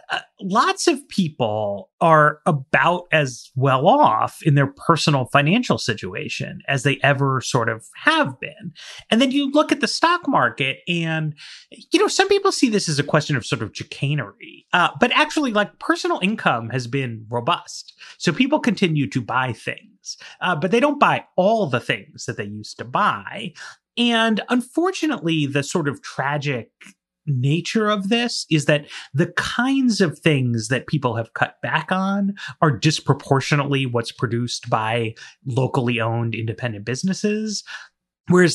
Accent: American